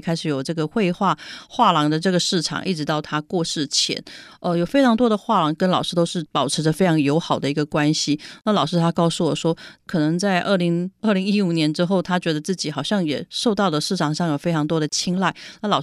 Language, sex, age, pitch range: Chinese, female, 30-49, 155-190 Hz